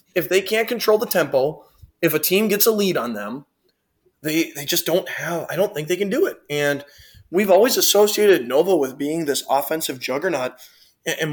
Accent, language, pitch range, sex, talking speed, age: American, English, 140-195 Hz, male, 200 wpm, 20-39